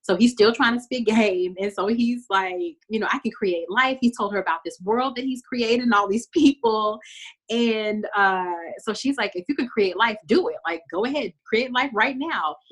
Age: 30-49